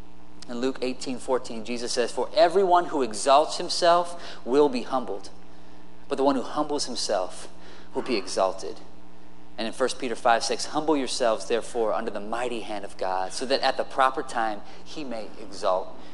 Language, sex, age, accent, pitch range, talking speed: English, male, 30-49, American, 135-210 Hz, 175 wpm